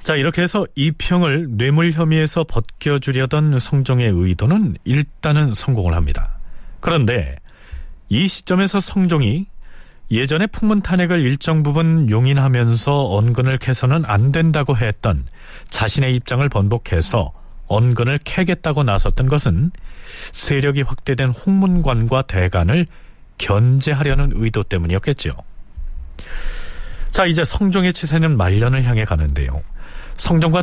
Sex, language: male, Korean